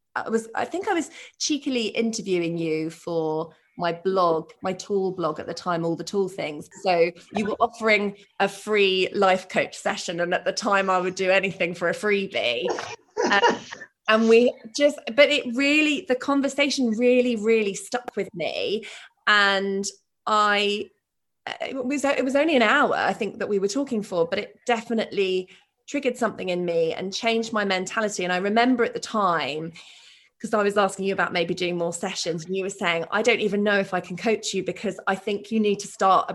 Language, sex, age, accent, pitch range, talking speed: English, female, 20-39, British, 180-230 Hz, 190 wpm